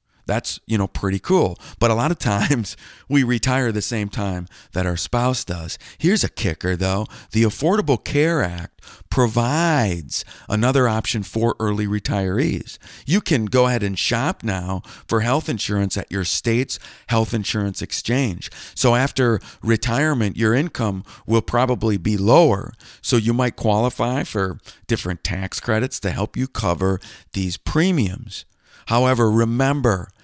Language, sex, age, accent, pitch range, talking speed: English, male, 50-69, American, 95-130 Hz, 145 wpm